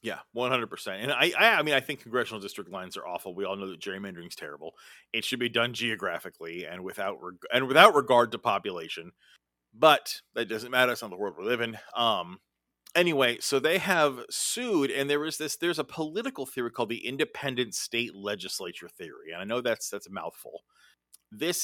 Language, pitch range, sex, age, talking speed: English, 115-165 Hz, male, 30-49, 200 wpm